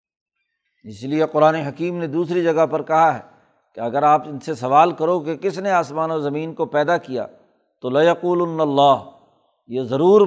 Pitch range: 145-175 Hz